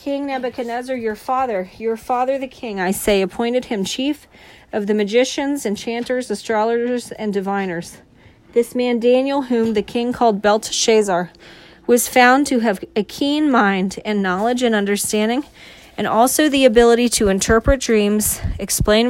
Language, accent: English, American